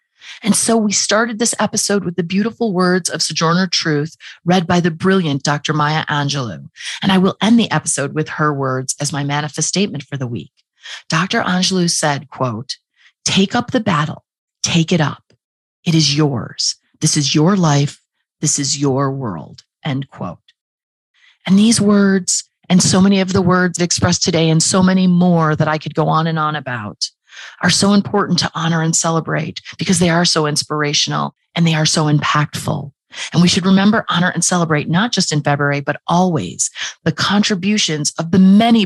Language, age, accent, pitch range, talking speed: English, 30-49, American, 150-190 Hz, 180 wpm